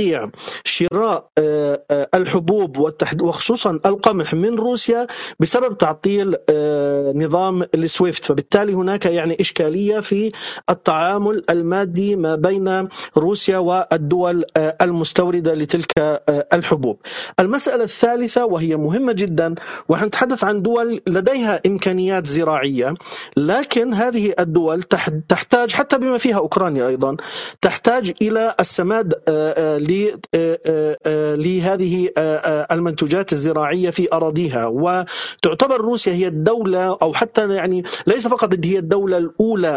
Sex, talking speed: male, 95 wpm